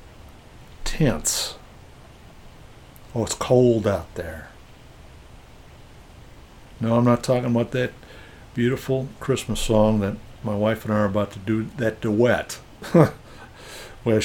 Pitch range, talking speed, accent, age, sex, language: 105-135 Hz, 115 wpm, American, 60-79, male, English